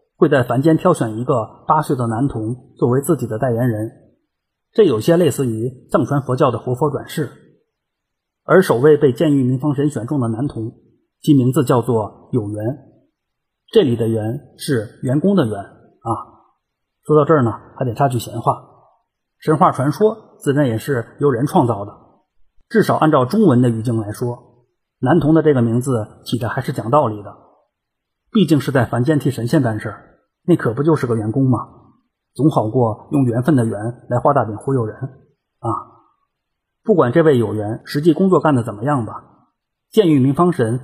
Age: 30-49